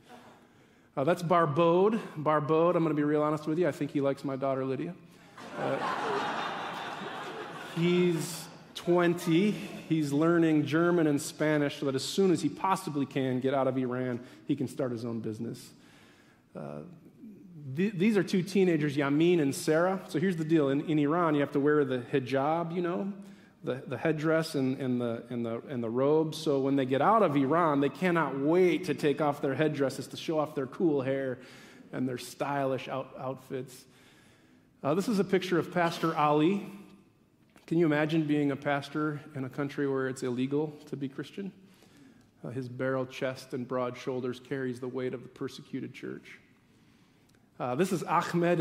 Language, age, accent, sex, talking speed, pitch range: English, 40-59, American, male, 180 wpm, 130-170 Hz